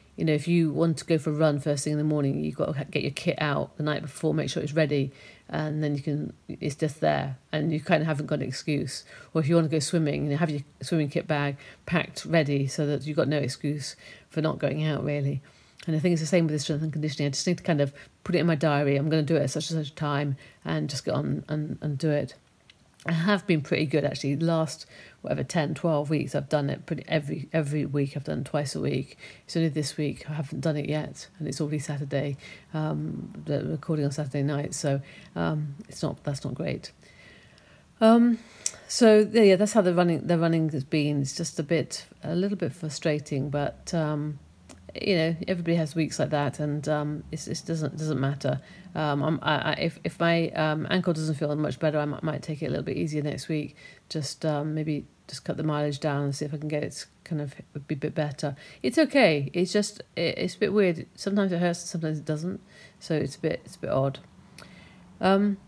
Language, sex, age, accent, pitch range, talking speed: English, female, 50-69, British, 145-165 Hz, 240 wpm